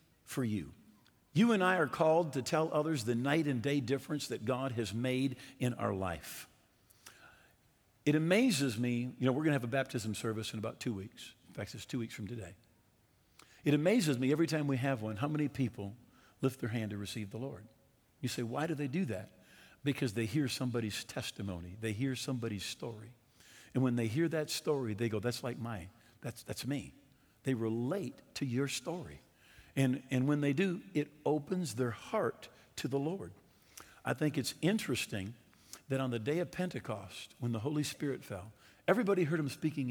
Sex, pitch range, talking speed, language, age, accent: male, 110-145 Hz, 190 wpm, English, 50-69, American